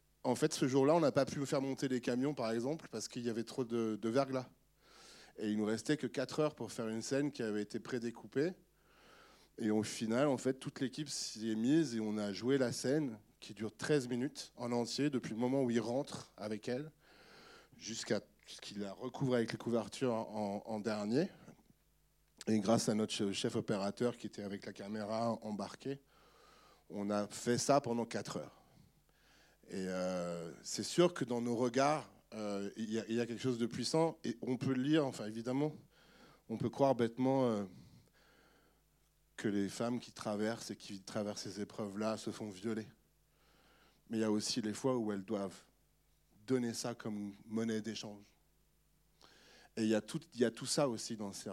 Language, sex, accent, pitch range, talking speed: French, male, French, 110-130 Hz, 190 wpm